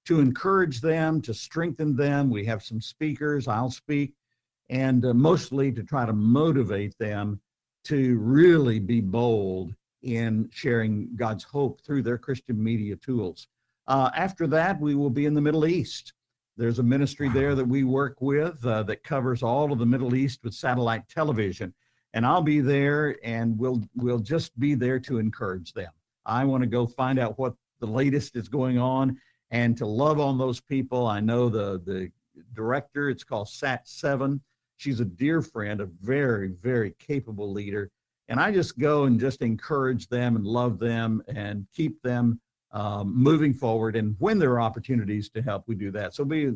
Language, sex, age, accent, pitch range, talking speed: English, male, 50-69, American, 110-140 Hz, 180 wpm